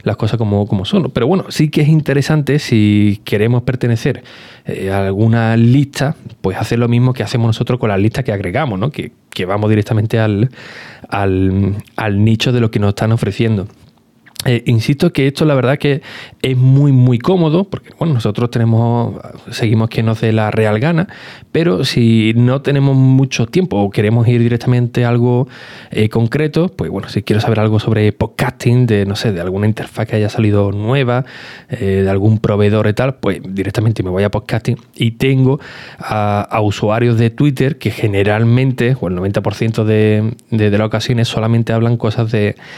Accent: Spanish